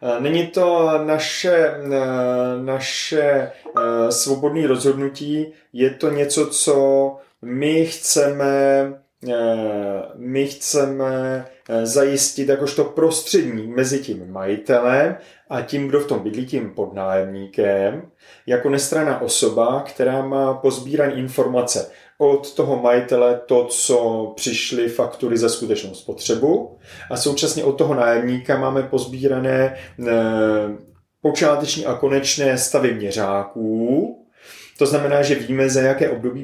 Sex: male